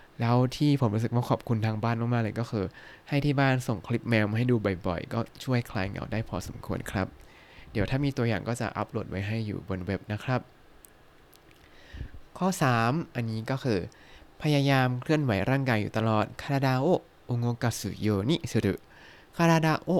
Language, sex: Thai, male